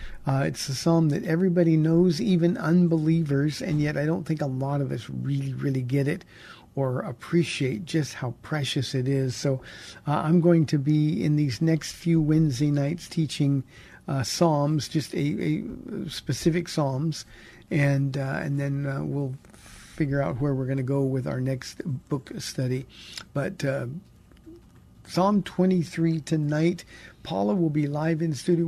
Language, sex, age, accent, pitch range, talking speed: English, male, 50-69, American, 140-170 Hz, 165 wpm